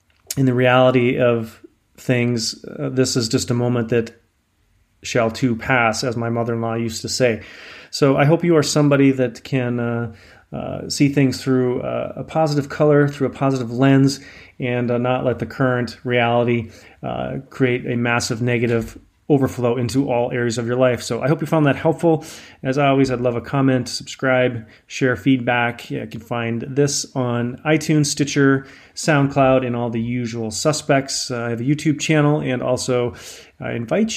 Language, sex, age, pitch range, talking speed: English, male, 30-49, 120-135 Hz, 175 wpm